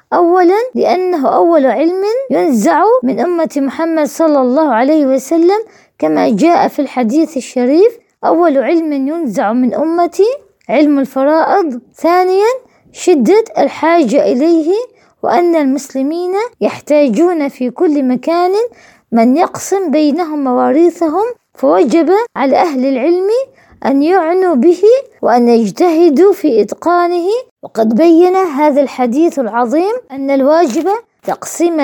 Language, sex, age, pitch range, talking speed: Arabic, female, 20-39, 275-365 Hz, 105 wpm